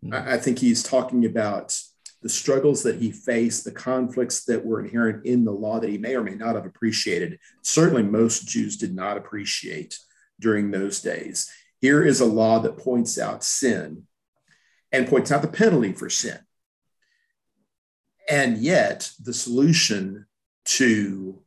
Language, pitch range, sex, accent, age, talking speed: English, 110-145 Hz, male, American, 50-69, 155 wpm